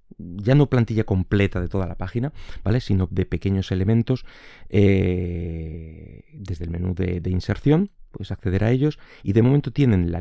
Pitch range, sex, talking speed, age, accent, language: 90-105 Hz, male, 165 wpm, 30-49, Spanish, Spanish